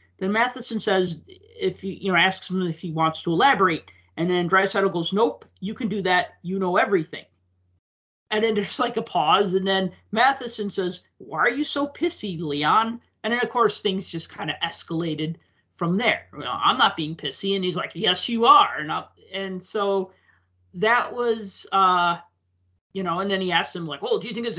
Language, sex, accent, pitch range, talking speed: English, male, American, 160-200 Hz, 210 wpm